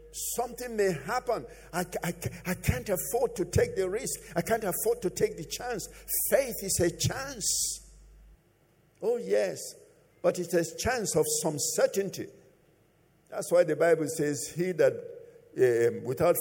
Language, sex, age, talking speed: English, male, 50-69, 150 wpm